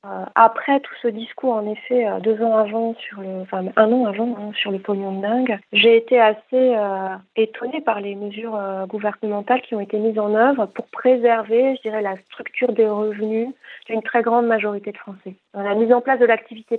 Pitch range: 200-235 Hz